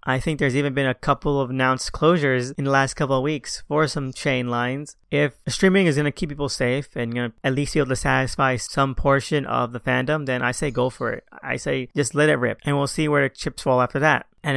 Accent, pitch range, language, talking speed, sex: American, 125-140 Hz, English, 265 wpm, male